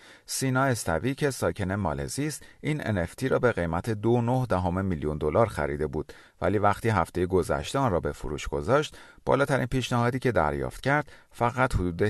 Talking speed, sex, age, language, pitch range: 170 wpm, male, 40-59, Persian, 80-125 Hz